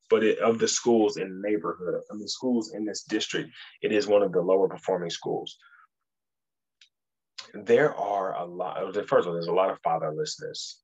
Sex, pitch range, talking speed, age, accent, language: male, 95-115 Hz, 195 wpm, 20-39, American, English